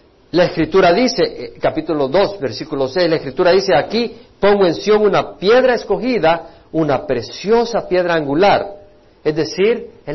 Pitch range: 155-225 Hz